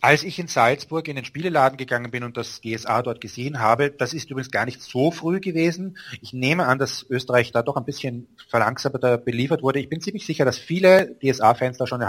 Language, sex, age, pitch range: German, male, 30-49, 115-145 Hz